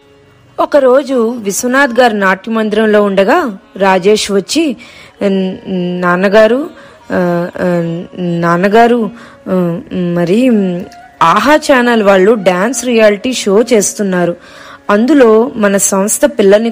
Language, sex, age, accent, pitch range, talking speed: Telugu, female, 20-39, native, 195-245 Hz, 75 wpm